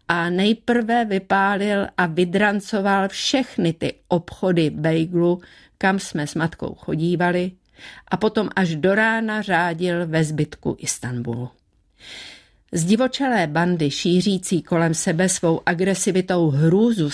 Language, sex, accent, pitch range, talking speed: Czech, female, native, 165-185 Hz, 110 wpm